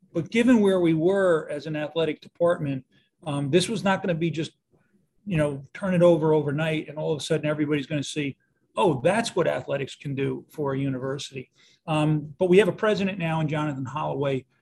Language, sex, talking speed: English, male, 210 wpm